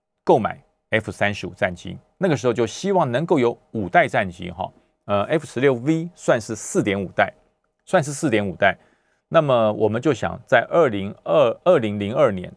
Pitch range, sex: 95-145 Hz, male